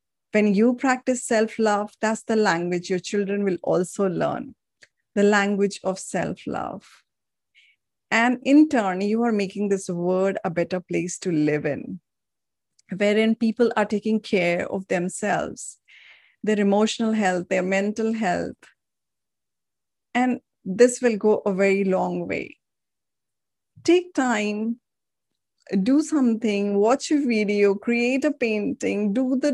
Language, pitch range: English, 190-235 Hz